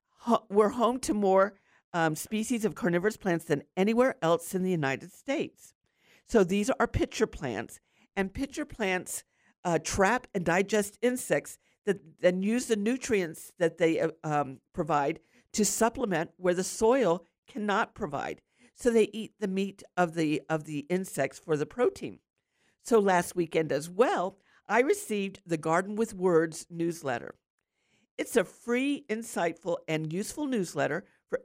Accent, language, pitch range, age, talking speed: American, English, 165-220 Hz, 50-69, 150 wpm